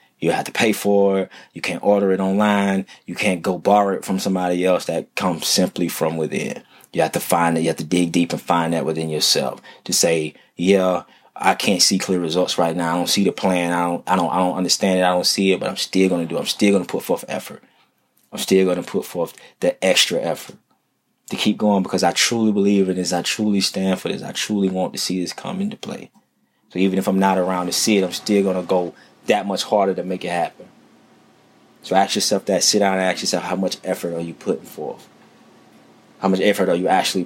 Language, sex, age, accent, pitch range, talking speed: English, male, 20-39, American, 90-100 Hz, 250 wpm